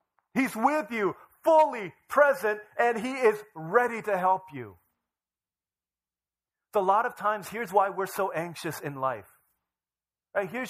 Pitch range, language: 130-210 Hz, English